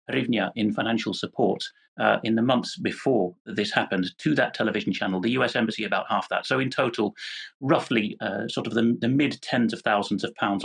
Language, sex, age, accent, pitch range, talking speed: English, male, 40-59, British, 105-130 Hz, 195 wpm